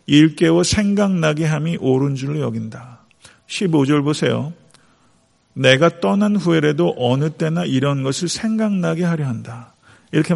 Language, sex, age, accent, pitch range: Korean, male, 40-59, native, 135-180 Hz